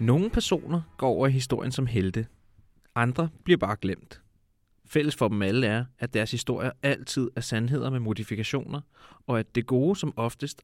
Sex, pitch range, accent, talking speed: male, 115-140 Hz, native, 175 wpm